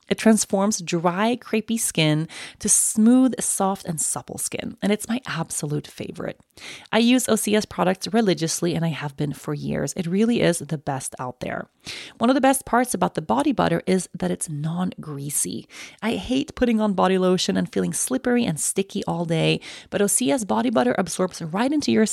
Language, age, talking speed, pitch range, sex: English, 30-49, 185 wpm, 170-230 Hz, female